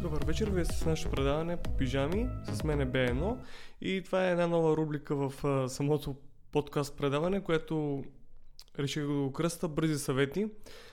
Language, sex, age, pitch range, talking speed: Bulgarian, male, 20-39, 135-155 Hz, 165 wpm